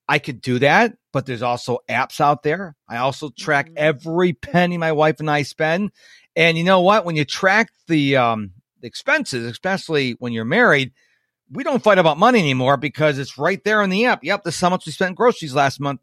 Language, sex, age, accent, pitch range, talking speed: English, male, 50-69, American, 125-185 Hz, 220 wpm